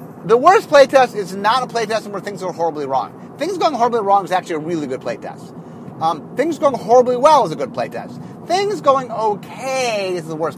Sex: male